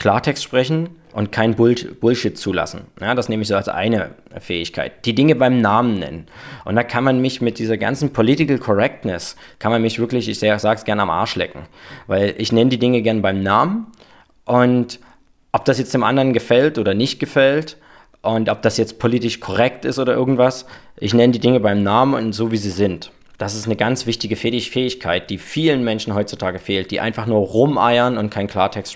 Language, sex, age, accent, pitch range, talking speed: German, male, 20-39, German, 105-130 Hz, 195 wpm